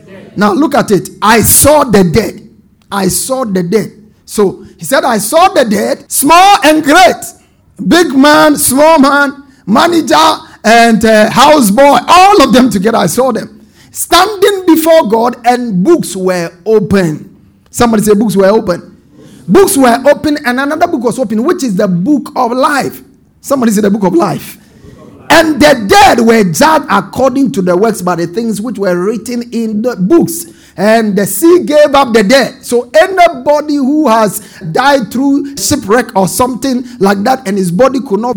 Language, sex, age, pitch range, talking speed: English, male, 50-69, 200-275 Hz, 175 wpm